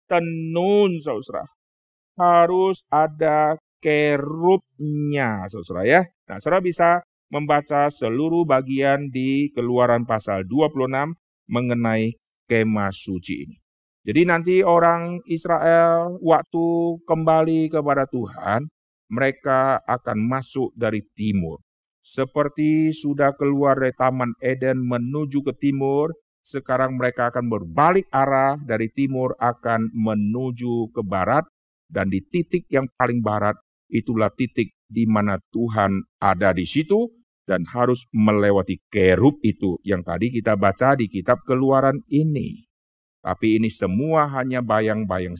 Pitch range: 110-150 Hz